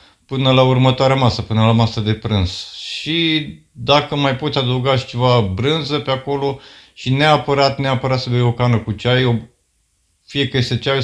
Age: 50-69